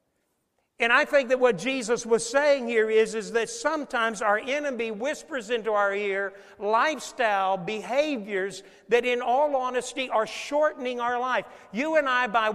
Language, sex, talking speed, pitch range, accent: English, male, 160 wpm, 175-240 Hz, American